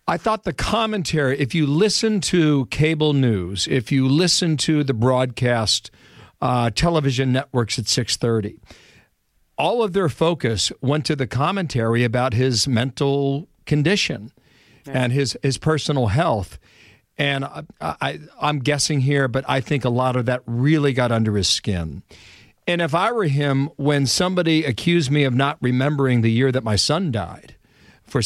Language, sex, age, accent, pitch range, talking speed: English, male, 50-69, American, 120-155 Hz, 155 wpm